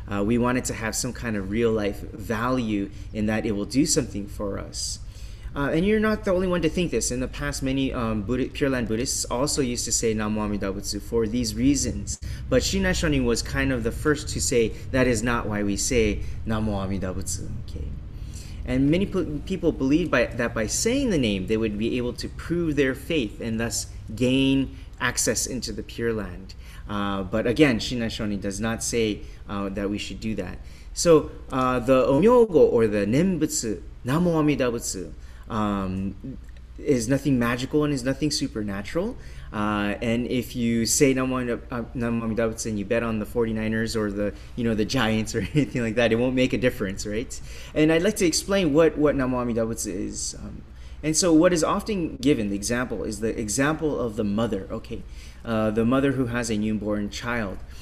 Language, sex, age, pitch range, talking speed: English, male, 30-49, 105-140 Hz, 195 wpm